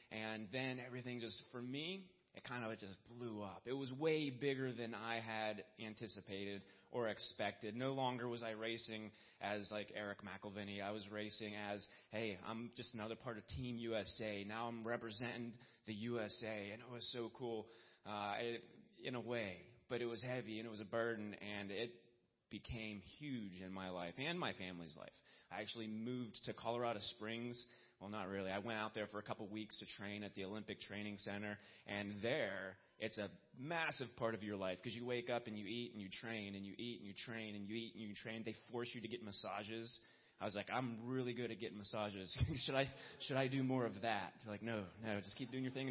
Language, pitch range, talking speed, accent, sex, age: English, 105-120 Hz, 215 wpm, American, male, 30-49